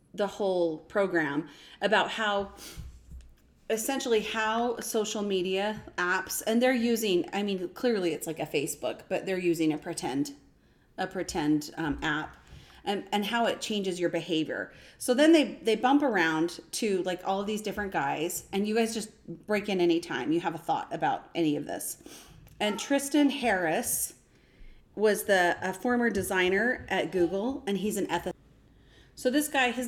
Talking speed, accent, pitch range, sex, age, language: 165 wpm, American, 180-235 Hz, female, 30-49, English